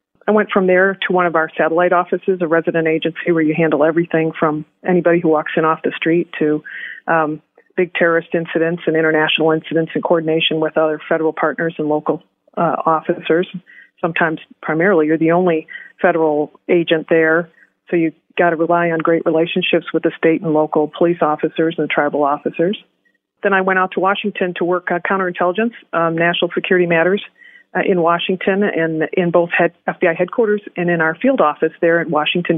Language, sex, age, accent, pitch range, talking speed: English, female, 50-69, American, 160-180 Hz, 185 wpm